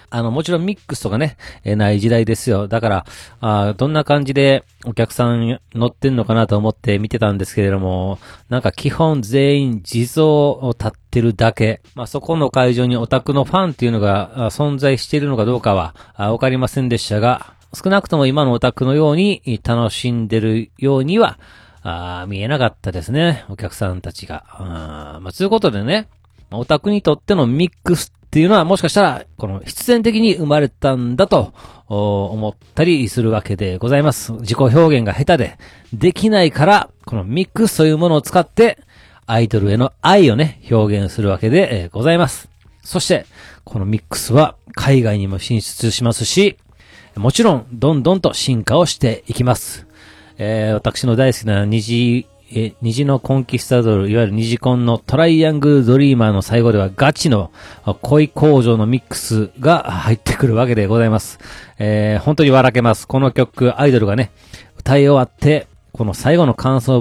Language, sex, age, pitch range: Japanese, male, 40-59, 105-140 Hz